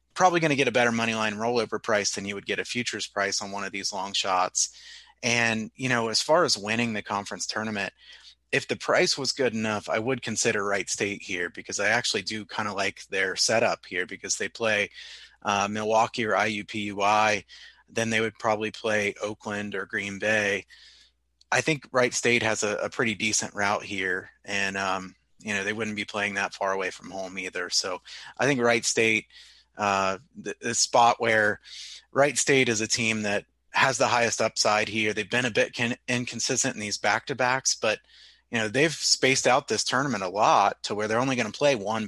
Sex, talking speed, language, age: male, 205 wpm, English, 30-49